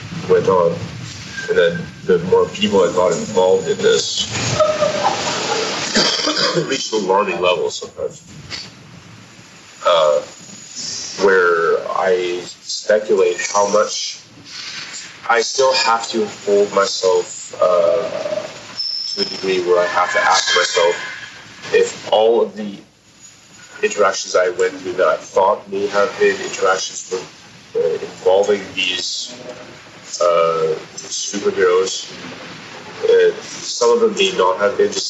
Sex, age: male, 30-49